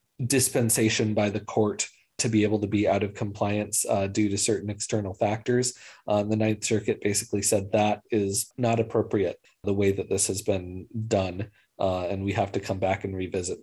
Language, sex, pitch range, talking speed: English, male, 105-115 Hz, 195 wpm